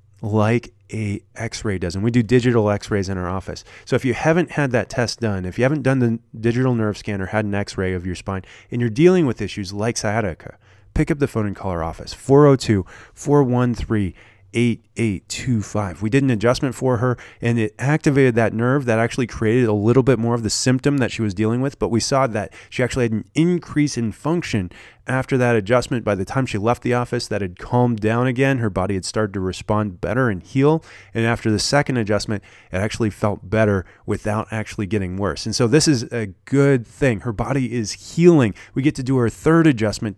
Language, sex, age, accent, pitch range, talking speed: English, male, 20-39, American, 100-130 Hz, 220 wpm